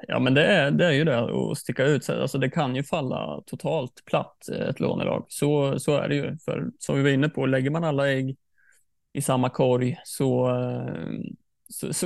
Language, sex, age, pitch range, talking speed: Swedish, male, 20-39, 130-150 Hz, 190 wpm